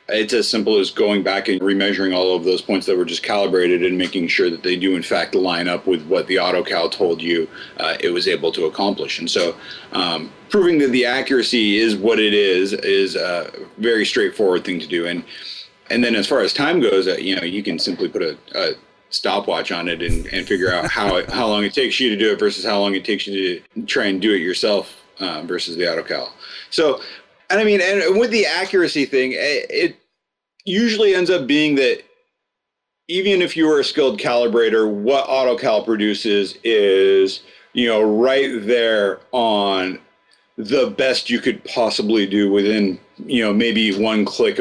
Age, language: 30-49, English